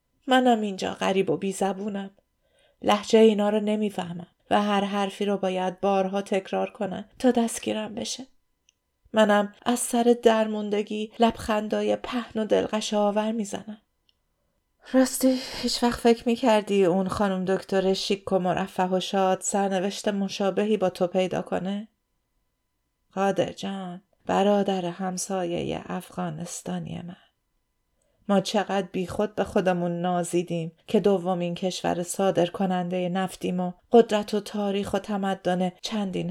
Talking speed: 125 wpm